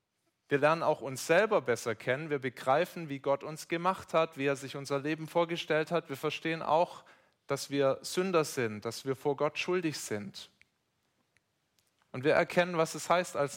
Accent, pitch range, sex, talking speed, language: German, 135-165 Hz, male, 180 wpm, German